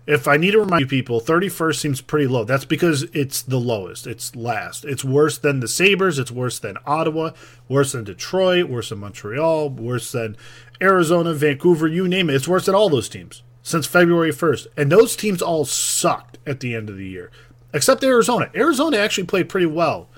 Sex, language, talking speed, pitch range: male, English, 200 wpm, 120-160 Hz